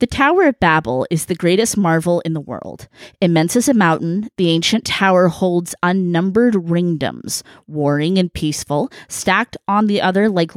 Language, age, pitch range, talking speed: English, 20-39, 170-220 Hz, 165 wpm